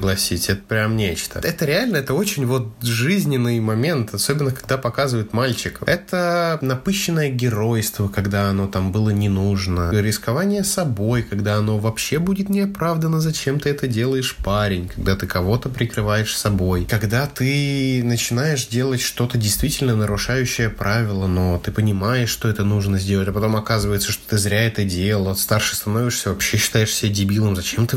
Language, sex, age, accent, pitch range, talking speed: Russian, male, 20-39, native, 100-120 Hz, 155 wpm